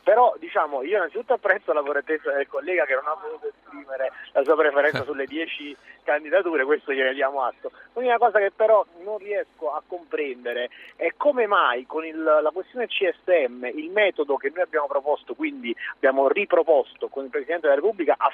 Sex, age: male, 30-49